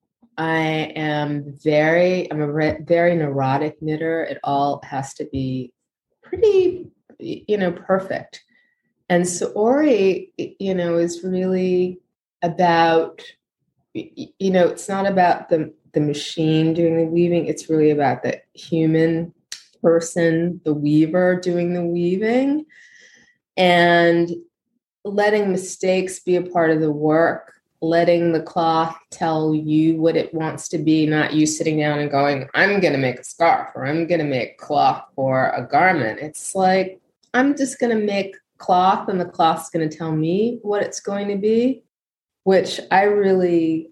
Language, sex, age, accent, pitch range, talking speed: English, female, 30-49, American, 155-190 Hz, 145 wpm